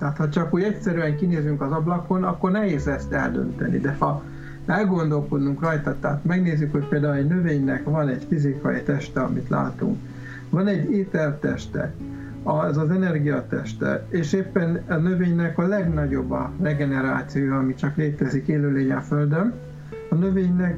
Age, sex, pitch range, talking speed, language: 60-79, male, 145-180 Hz, 145 wpm, Hungarian